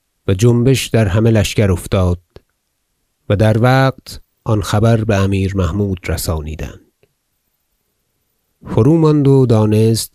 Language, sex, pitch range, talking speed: Persian, male, 100-130 Hz, 105 wpm